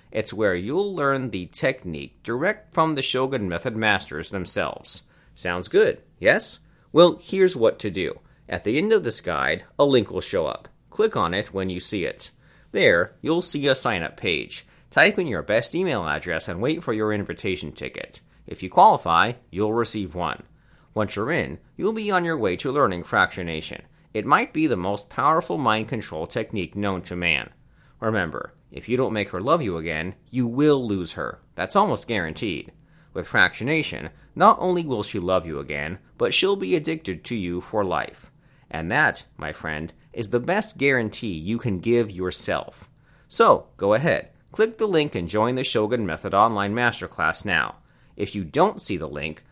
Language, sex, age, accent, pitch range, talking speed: English, male, 30-49, American, 90-150 Hz, 185 wpm